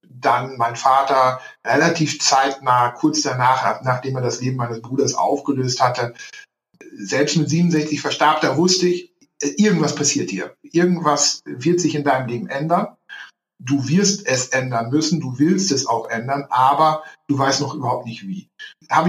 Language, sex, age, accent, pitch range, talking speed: German, male, 60-79, German, 130-160 Hz, 155 wpm